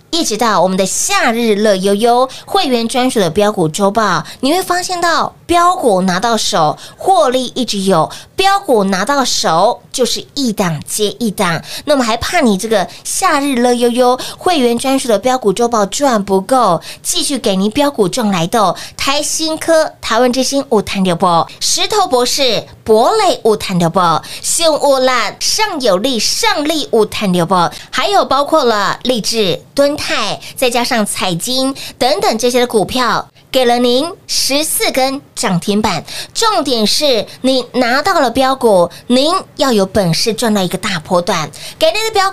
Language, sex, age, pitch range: Chinese, female, 20-39, 205-285 Hz